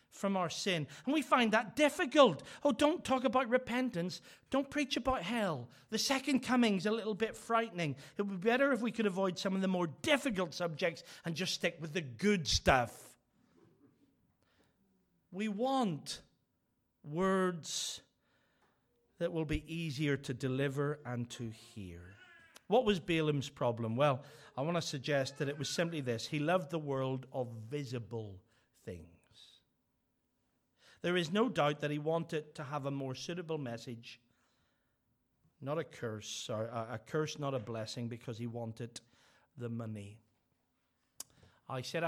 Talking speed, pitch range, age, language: 155 wpm, 120-185 Hz, 40-59, English